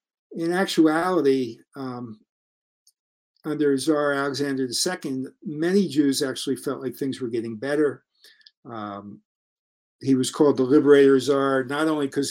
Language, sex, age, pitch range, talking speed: English, male, 50-69, 135-185 Hz, 125 wpm